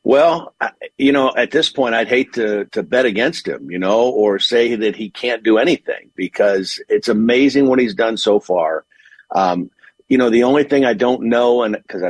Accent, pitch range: American, 100-125 Hz